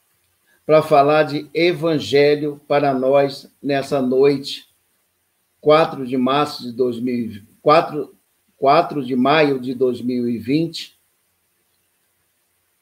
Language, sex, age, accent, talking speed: Portuguese, male, 60-79, Brazilian, 65 wpm